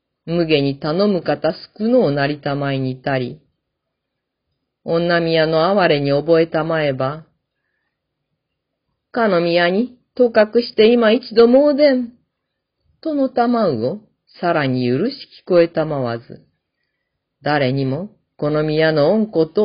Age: 40-59